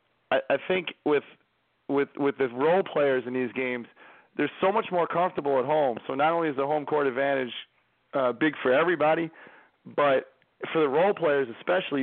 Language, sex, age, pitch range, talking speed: English, male, 30-49, 130-155 Hz, 180 wpm